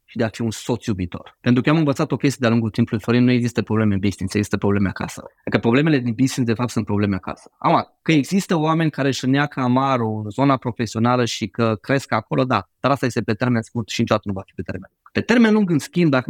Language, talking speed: Romanian, 260 wpm